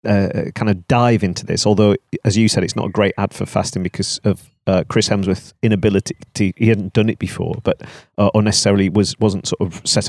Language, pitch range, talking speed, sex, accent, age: English, 100-120 Hz, 230 wpm, male, British, 40-59